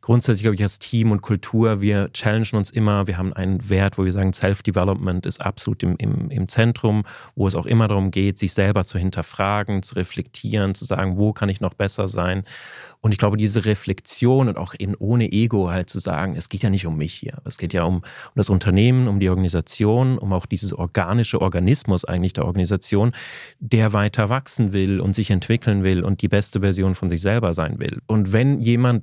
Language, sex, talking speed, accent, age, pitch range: German, male, 205 wpm, German, 30-49, 95-120 Hz